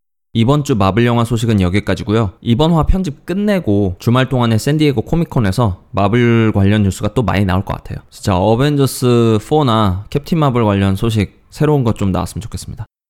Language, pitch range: Korean, 100-130 Hz